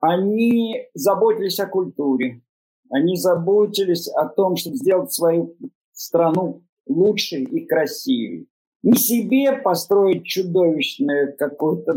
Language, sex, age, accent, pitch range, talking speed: Russian, male, 50-69, native, 175-245 Hz, 100 wpm